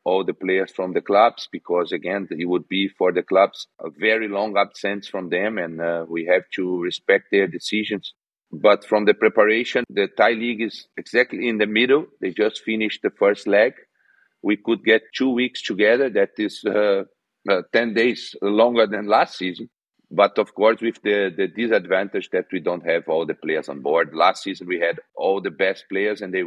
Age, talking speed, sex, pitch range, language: 40-59, 200 wpm, male, 95-115 Hz, English